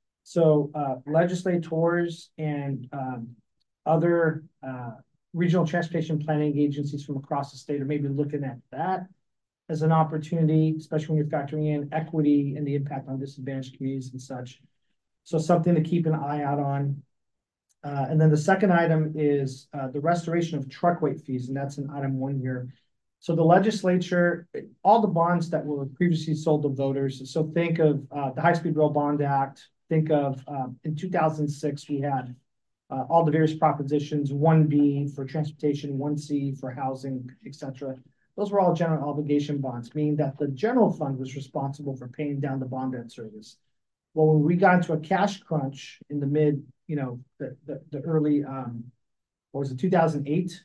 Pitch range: 135-160 Hz